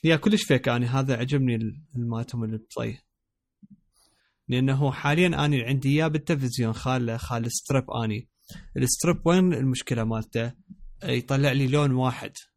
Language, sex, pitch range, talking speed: Arabic, male, 115-135 Hz, 135 wpm